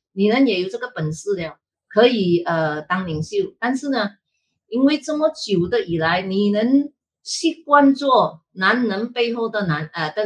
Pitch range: 185-270 Hz